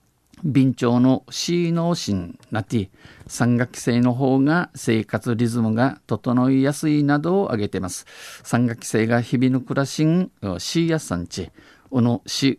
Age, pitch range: 50-69, 110-140 Hz